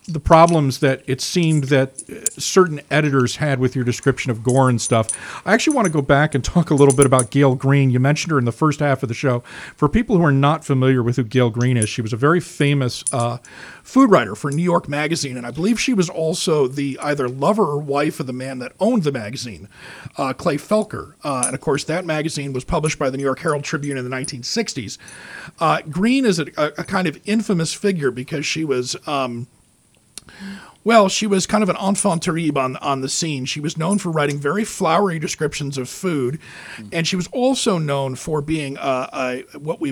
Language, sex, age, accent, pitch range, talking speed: English, male, 40-59, American, 130-175 Hz, 220 wpm